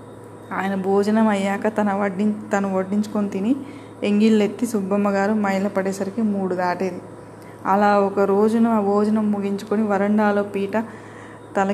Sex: female